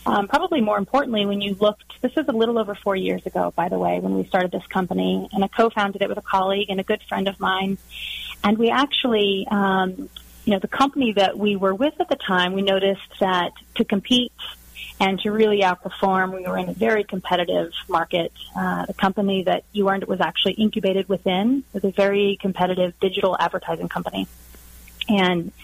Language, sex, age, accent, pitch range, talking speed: English, female, 30-49, American, 180-210 Hz, 200 wpm